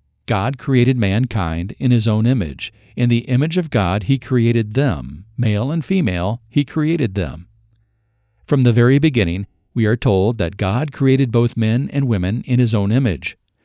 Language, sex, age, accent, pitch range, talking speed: English, male, 50-69, American, 105-130 Hz, 170 wpm